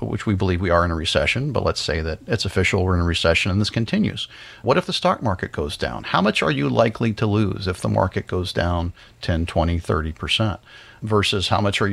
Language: English